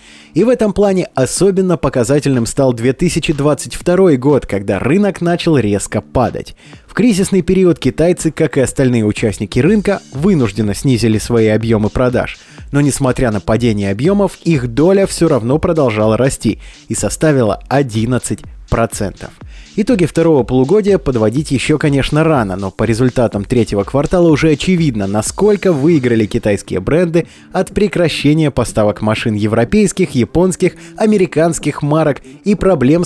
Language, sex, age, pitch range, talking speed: Russian, male, 20-39, 115-170 Hz, 125 wpm